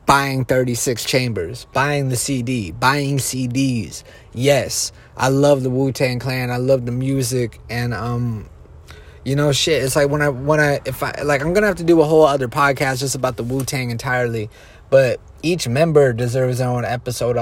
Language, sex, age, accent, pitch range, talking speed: English, male, 30-49, American, 120-140 Hz, 195 wpm